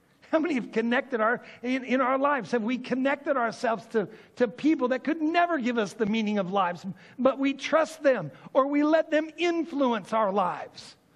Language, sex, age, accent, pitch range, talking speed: English, male, 50-69, American, 200-295 Hz, 195 wpm